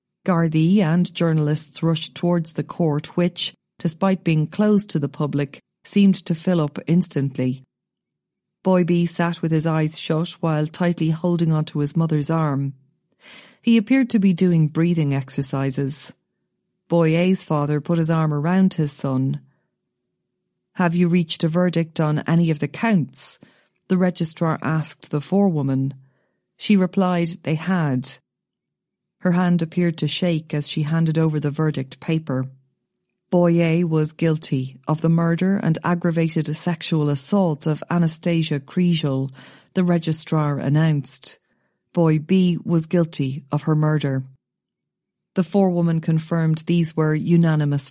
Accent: Irish